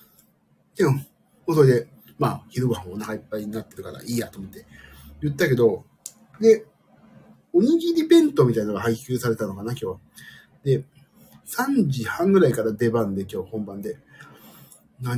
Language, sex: Japanese, male